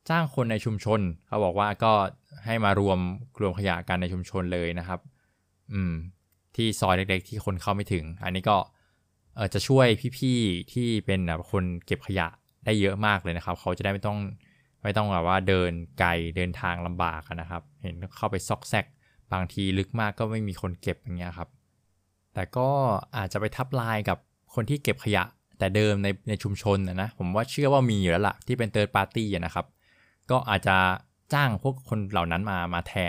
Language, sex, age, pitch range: Thai, male, 20-39, 90-110 Hz